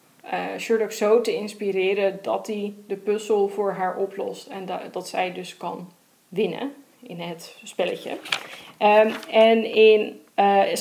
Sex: female